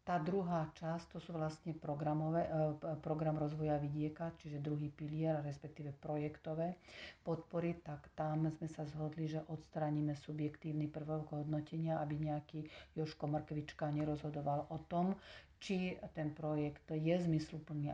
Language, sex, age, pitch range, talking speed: Slovak, female, 40-59, 150-160 Hz, 125 wpm